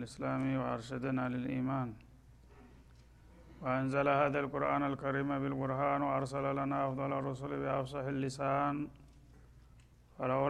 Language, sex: Amharic, male